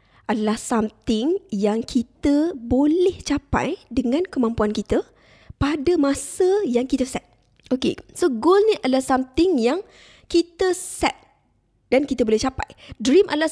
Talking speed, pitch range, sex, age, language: 130 wpm, 210-295 Hz, female, 20-39, Malay